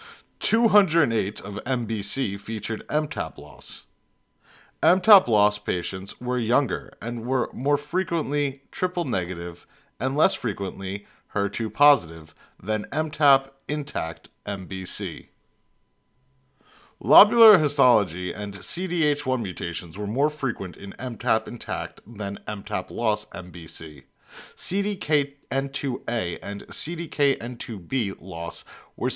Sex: male